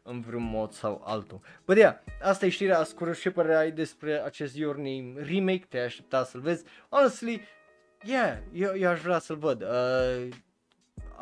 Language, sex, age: Romanian, male, 20-39